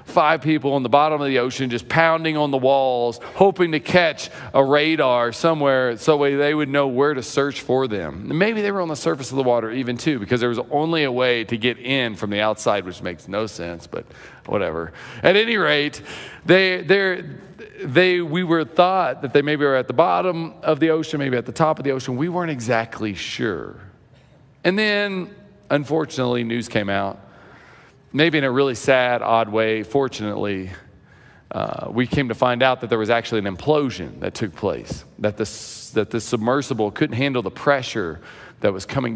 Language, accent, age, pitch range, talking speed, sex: English, American, 40-59, 110-150 Hz, 195 wpm, male